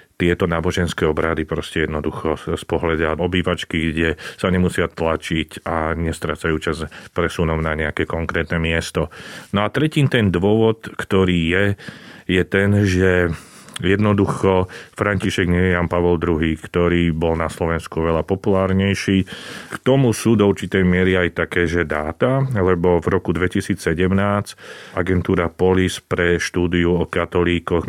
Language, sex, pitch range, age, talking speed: Slovak, male, 85-95 Hz, 40-59, 135 wpm